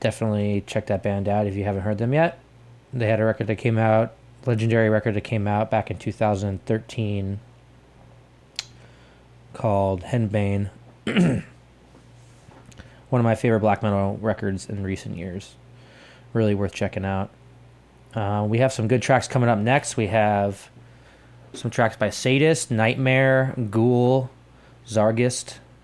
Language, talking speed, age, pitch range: English, 140 wpm, 20-39, 105-125 Hz